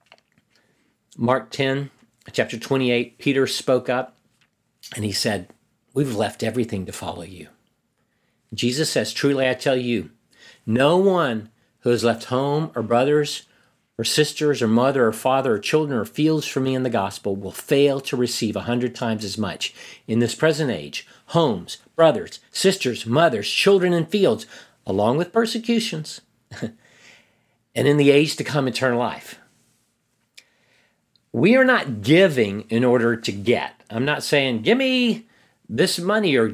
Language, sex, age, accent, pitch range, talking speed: English, male, 50-69, American, 115-170 Hz, 150 wpm